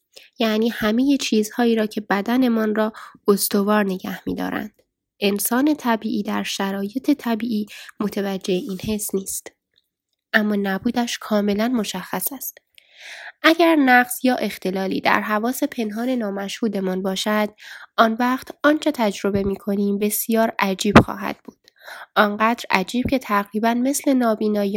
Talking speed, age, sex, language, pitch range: 115 wpm, 10-29, female, Persian, 205-245 Hz